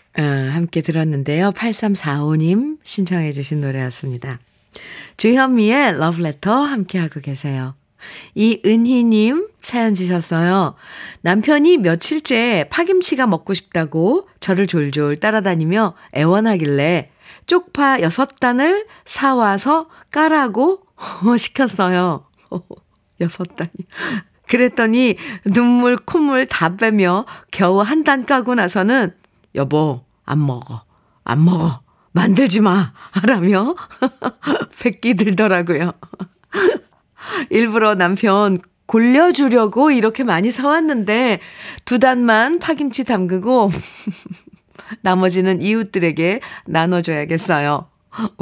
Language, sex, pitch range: Korean, female, 165-245 Hz